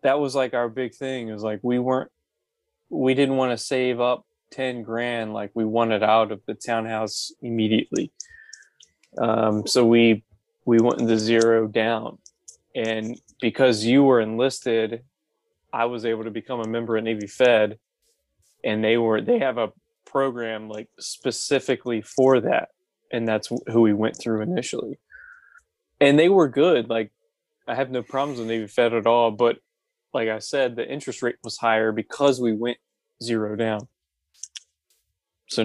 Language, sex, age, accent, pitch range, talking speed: English, male, 20-39, American, 110-135 Hz, 160 wpm